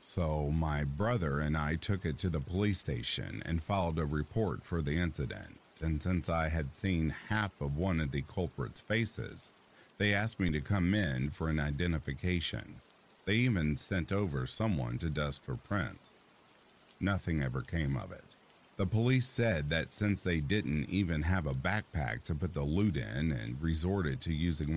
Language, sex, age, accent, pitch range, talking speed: English, male, 50-69, American, 75-100 Hz, 175 wpm